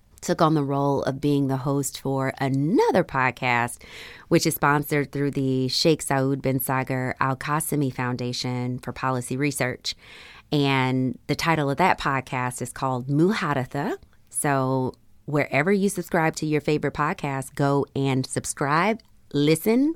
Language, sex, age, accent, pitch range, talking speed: English, female, 30-49, American, 130-160 Hz, 140 wpm